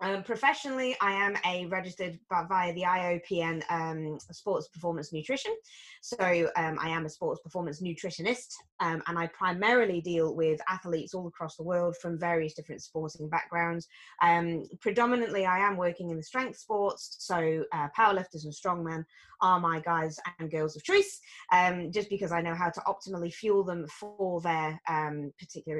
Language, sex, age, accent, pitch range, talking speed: English, female, 20-39, British, 160-200 Hz, 170 wpm